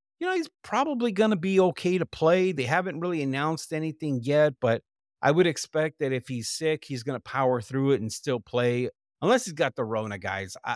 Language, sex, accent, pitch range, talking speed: English, male, American, 120-155 Hz, 220 wpm